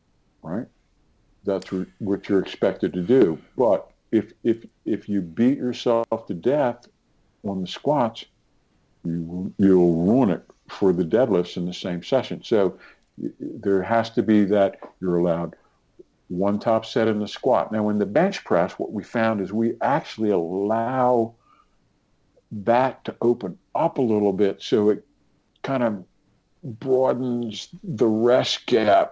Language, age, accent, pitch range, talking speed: English, 60-79, American, 95-115 Hz, 150 wpm